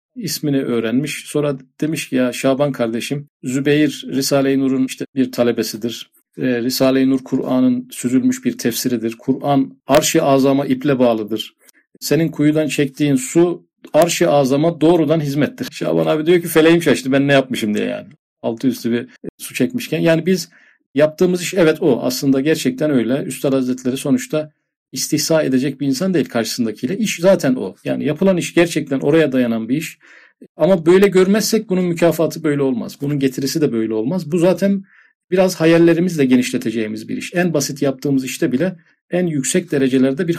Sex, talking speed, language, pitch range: male, 160 wpm, Turkish, 135-170 Hz